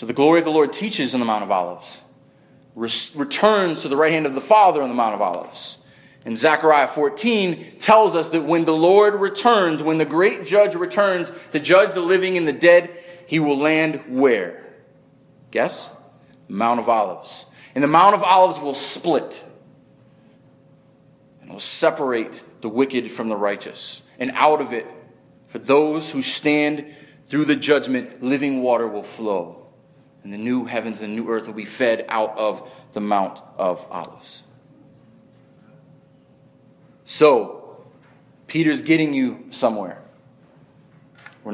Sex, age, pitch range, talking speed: male, 30-49, 135-195 Hz, 155 wpm